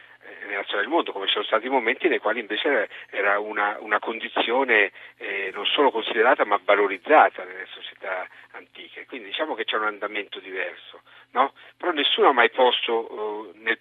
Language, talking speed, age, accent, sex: Italian, 165 wpm, 50-69, native, male